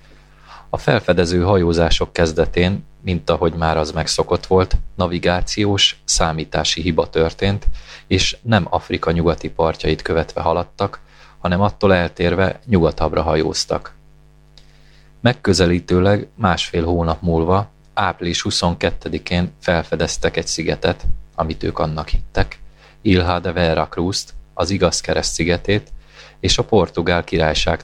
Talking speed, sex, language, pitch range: 110 wpm, male, Hungarian, 80-100 Hz